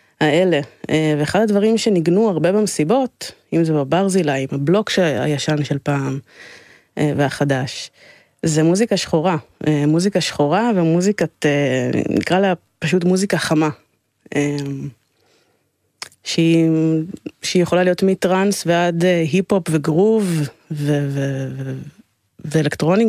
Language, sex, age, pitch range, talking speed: Hebrew, female, 20-39, 150-185 Hz, 95 wpm